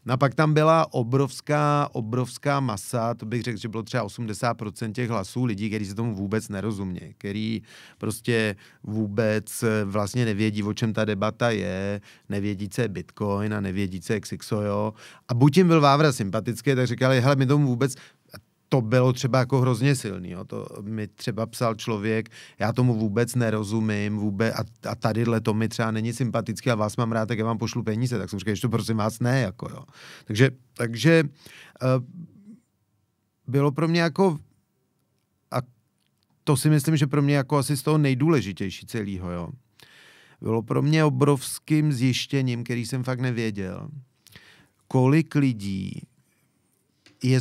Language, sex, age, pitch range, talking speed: Czech, male, 30-49, 110-135 Hz, 165 wpm